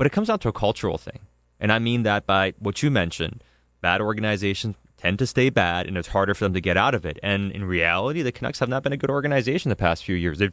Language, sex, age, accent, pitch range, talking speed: English, male, 30-49, American, 100-130 Hz, 275 wpm